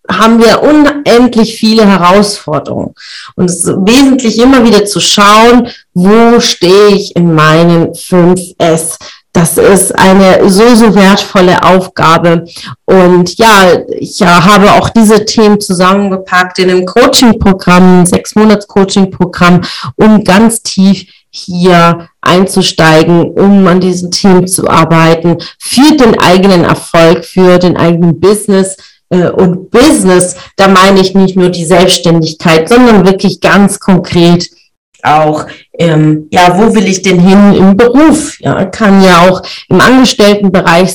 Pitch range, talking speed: 175-210 Hz, 130 wpm